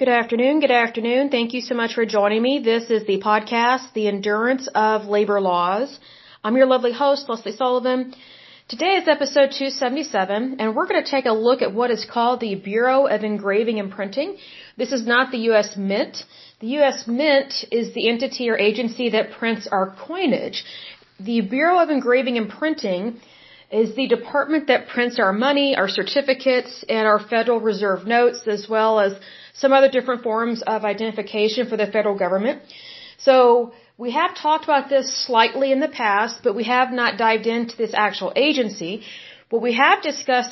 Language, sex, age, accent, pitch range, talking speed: English, female, 40-59, American, 215-265 Hz, 180 wpm